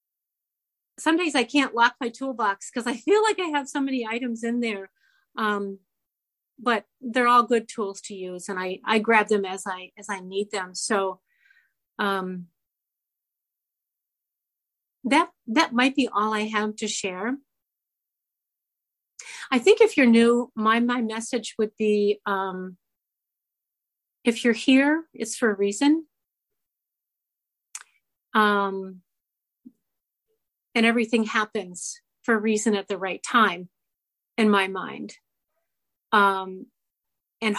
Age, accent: 40-59, American